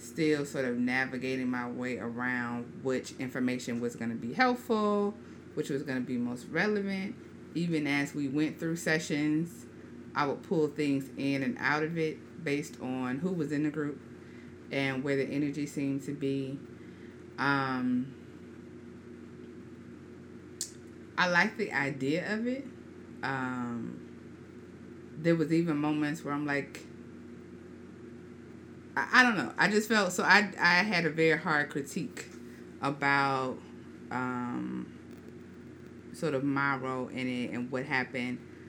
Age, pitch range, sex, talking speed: 30-49, 130-170 Hz, female, 140 wpm